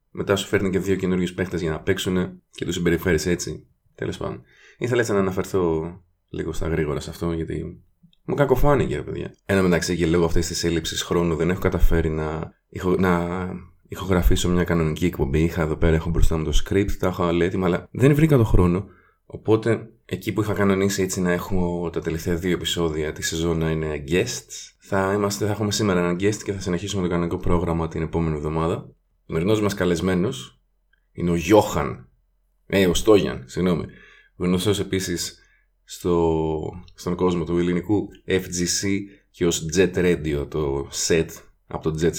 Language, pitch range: Greek, 80-95 Hz